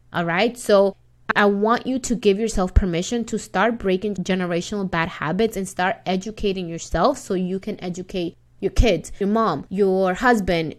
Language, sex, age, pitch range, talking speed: English, female, 20-39, 175-210 Hz, 165 wpm